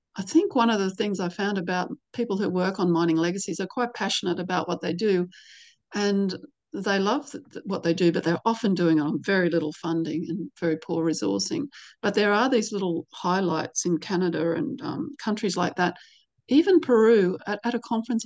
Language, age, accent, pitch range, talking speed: English, 40-59, Australian, 175-215 Hz, 195 wpm